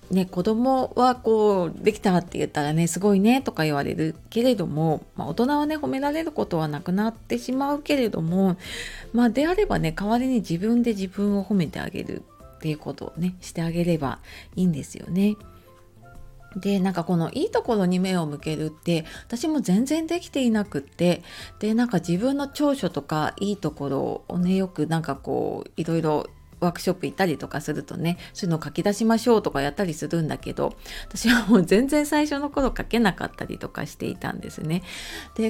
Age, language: 30-49, Japanese